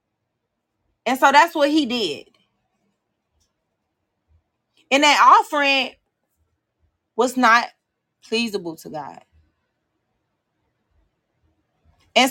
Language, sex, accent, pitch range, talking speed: English, female, American, 225-325 Hz, 75 wpm